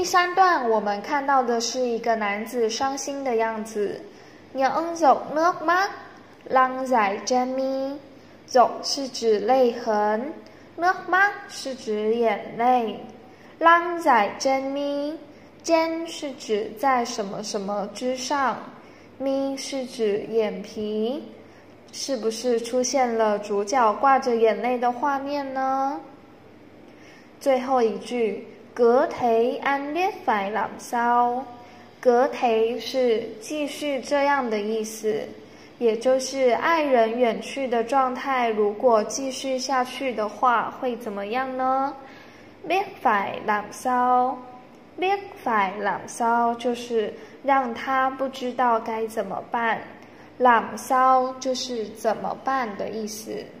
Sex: female